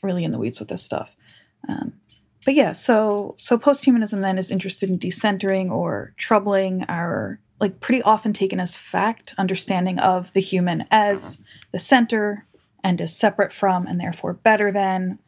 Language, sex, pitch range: English, female, 170-200 Hz